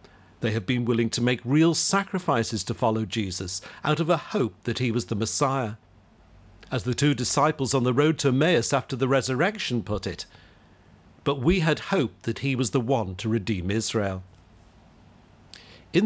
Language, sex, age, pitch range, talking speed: English, male, 50-69, 105-150 Hz, 175 wpm